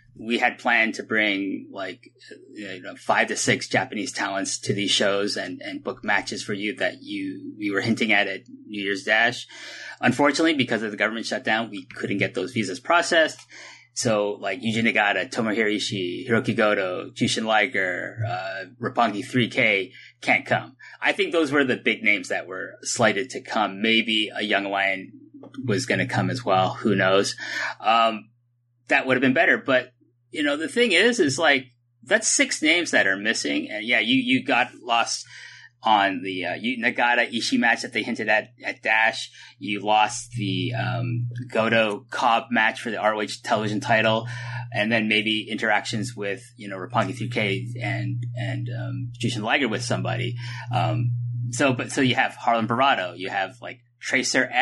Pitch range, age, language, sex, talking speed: 110-130 Hz, 30-49, English, male, 175 wpm